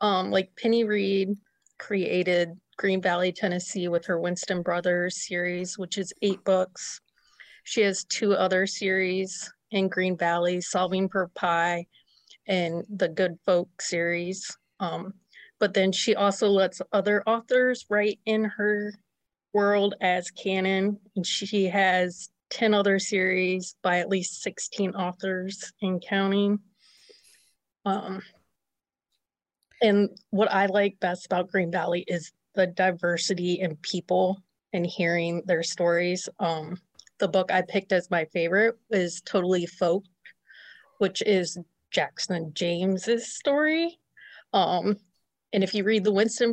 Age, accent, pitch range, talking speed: 30-49, American, 175-200 Hz, 130 wpm